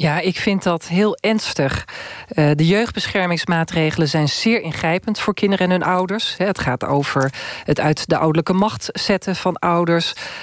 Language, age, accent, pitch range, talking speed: Dutch, 40-59, Dutch, 155-190 Hz, 155 wpm